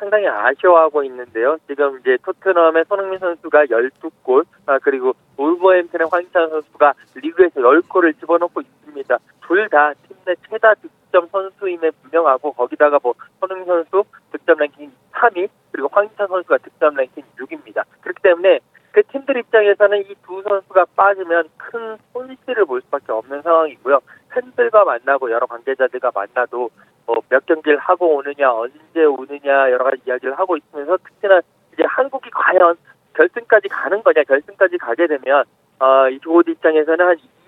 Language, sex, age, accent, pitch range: Korean, male, 40-59, native, 145-210 Hz